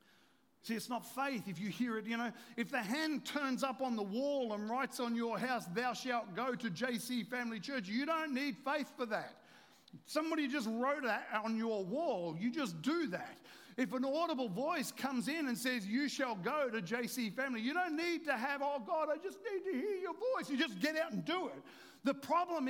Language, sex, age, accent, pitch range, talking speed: English, male, 50-69, Australian, 185-280 Hz, 220 wpm